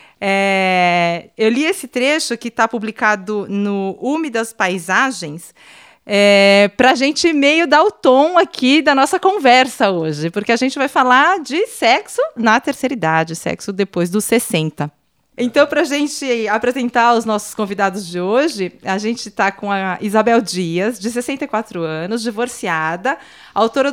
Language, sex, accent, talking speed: Portuguese, female, Brazilian, 150 wpm